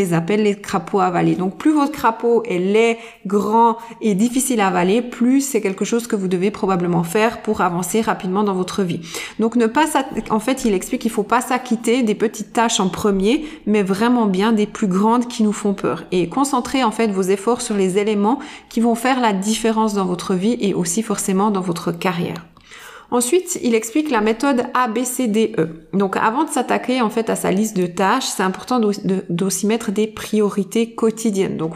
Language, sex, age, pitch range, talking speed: French, female, 30-49, 195-235 Hz, 205 wpm